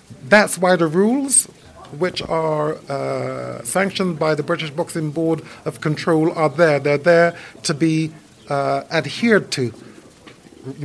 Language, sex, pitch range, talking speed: English, male, 135-180 Hz, 140 wpm